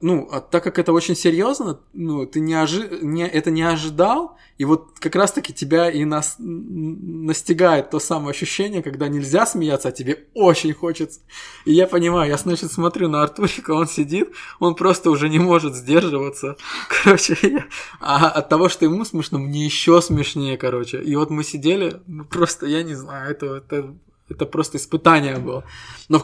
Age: 20-39